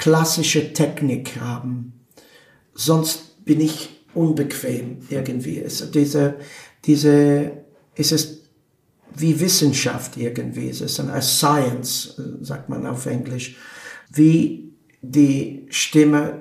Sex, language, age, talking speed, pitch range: male, German, 50-69, 100 wpm, 130-150 Hz